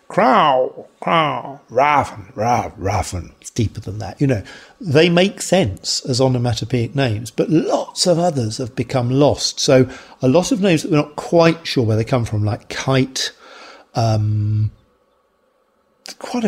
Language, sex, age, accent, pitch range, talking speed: English, male, 50-69, British, 115-150 Hz, 155 wpm